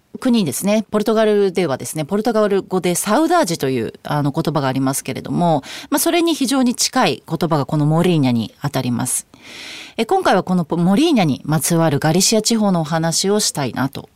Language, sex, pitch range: Japanese, female, 155-250 Hz